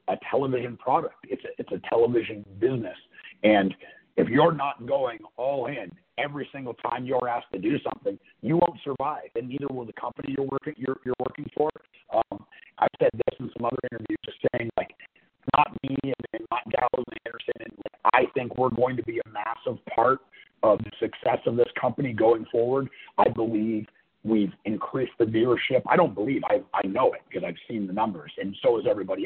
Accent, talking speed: American, 195 wpm